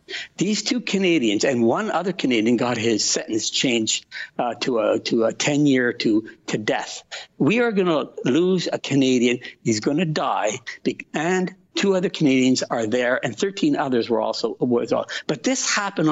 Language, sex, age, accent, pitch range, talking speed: English, male, 60-79, American, 145-200 Hz, 170 wpm